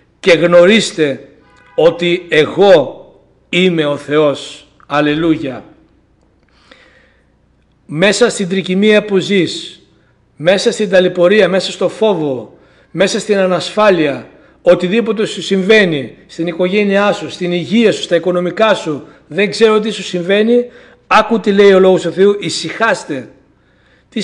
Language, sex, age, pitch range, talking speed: Greek, male, 60-79, 170-205 Hz, 120 wpm